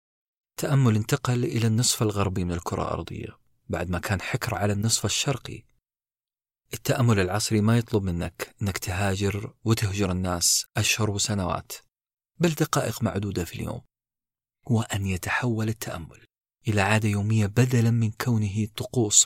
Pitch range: 100-120 Hz